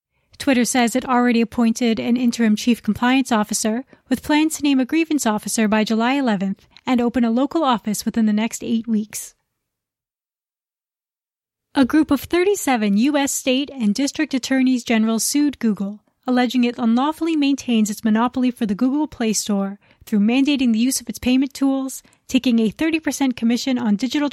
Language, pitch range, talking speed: English, 220-270 Hz, 165 wpm